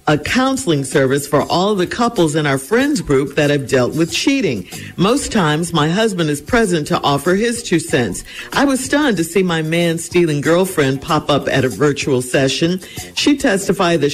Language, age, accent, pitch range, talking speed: English, 50-69, American, 150-235 Hz, 185 wpm